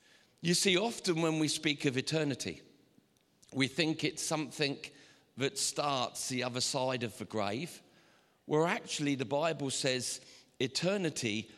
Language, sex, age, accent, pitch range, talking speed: English, male, 50-69, British, 110-145 Hz, 135 wpm